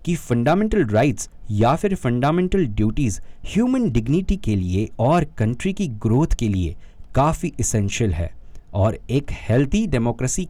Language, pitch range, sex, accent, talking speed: Hindi, 100-155 Hz, male, native, 120 wpm